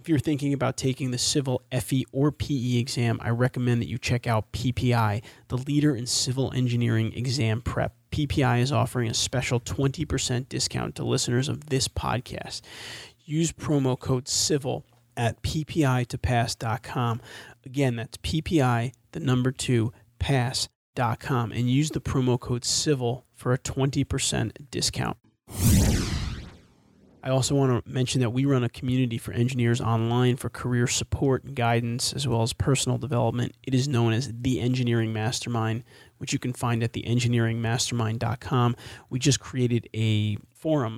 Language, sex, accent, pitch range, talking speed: English, male, American, 115-130 Hz, 150 wpm